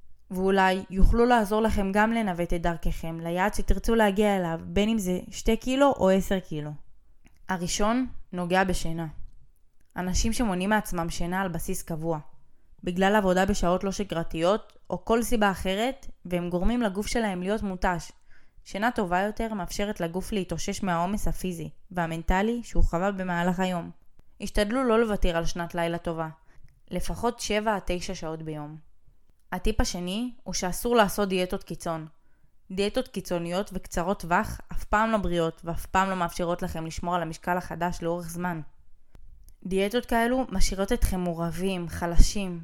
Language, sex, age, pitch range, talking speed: Hebrew, female, 20-39, 175-210 Hz, 140 wpm